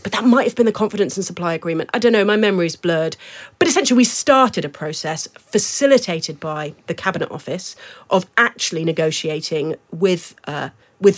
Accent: British